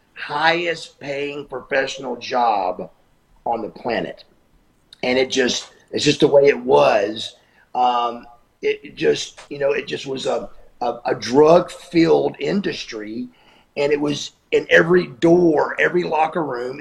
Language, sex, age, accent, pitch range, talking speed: English, male, 40-59, American, 135-210 Hz, 145 wpm